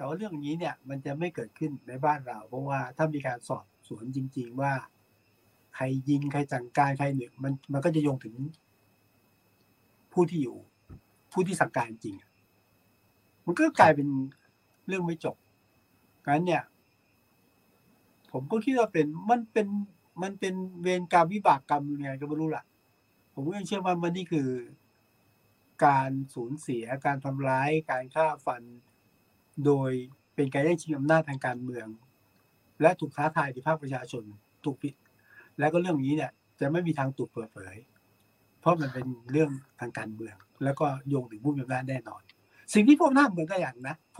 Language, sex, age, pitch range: Thai, male, 60-79, 110-155 Hz